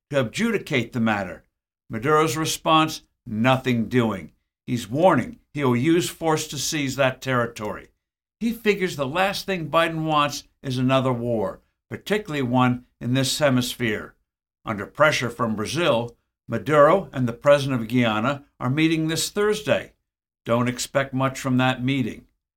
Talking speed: 140 wpm